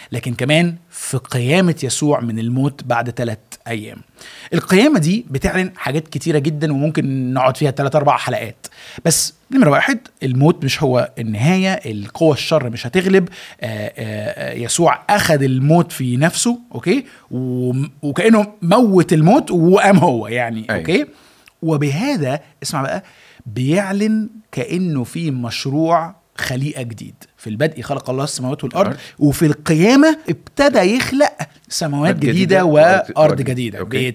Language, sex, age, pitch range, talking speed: Arabic, male, 30-49, 125-170 Hz, 125 wpm